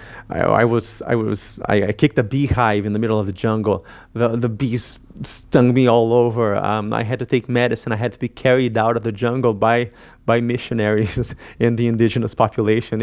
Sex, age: male, 30-49